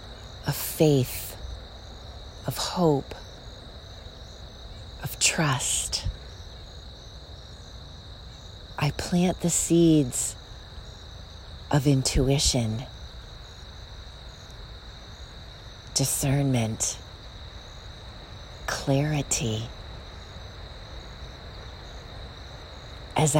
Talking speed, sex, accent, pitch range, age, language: 40 wpm, female, American, 90-155 Hz, 40-59, English